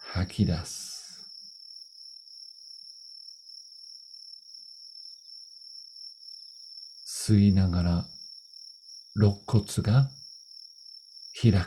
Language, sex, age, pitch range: Japanese, male, 50-69, 95-135 Hz